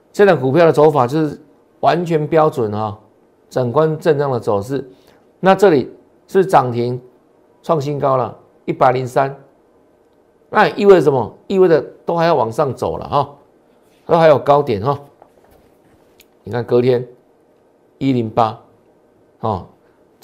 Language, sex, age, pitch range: Chinese, male, 50-69, 125-165 Hz